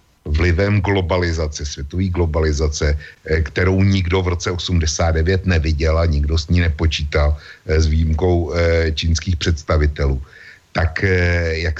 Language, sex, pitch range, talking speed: Slovak, male, 80-95 Hz, 105 wpm